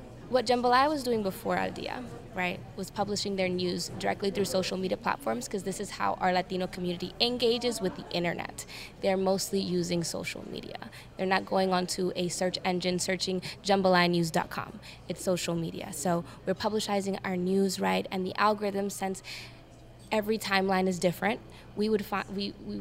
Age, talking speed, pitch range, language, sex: 20-39, 160 wpm, 180-215 Hz, English, female